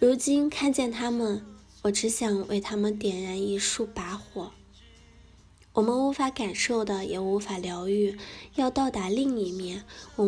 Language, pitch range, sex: Chinese, 200-240 Hz, female